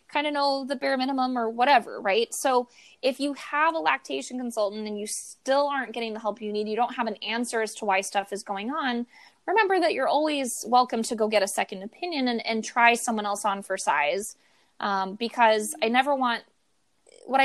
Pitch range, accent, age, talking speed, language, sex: 215-260 Hz, American, 20-39, 215 wpm, English, female